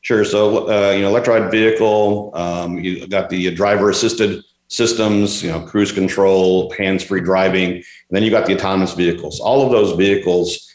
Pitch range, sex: 90-100 Hz, male